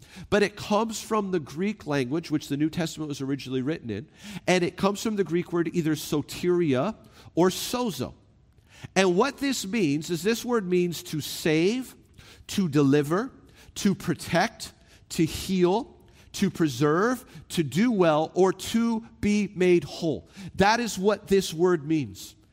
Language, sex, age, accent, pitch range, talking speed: English, male, 40-59, American, 170-215 Hz, 155 wpm